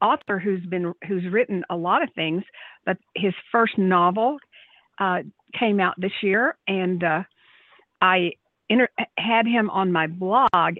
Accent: American